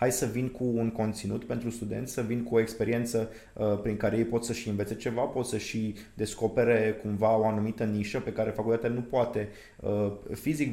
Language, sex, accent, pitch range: Romanian, male, native, 105-120 Hz